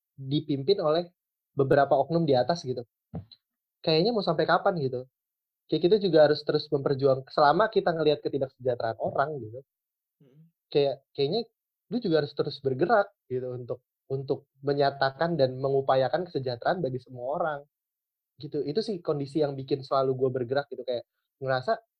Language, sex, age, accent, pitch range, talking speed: Indonesian, male, 20-39, native, 130-155 Hz, 145 wpm